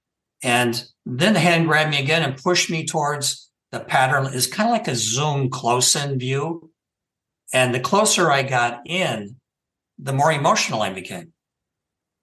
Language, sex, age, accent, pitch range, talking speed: English, male, 60-79, American, 120-160 Hz, 155 wpm